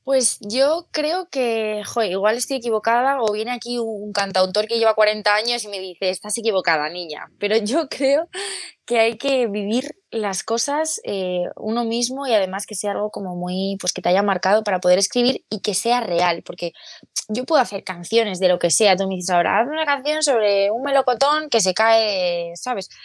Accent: Spanish